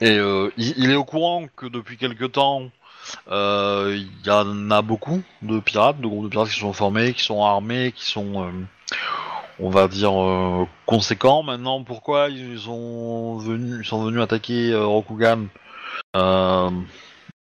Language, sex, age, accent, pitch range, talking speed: French, male, 30-49, French, 100-125 Hz, 170 wpm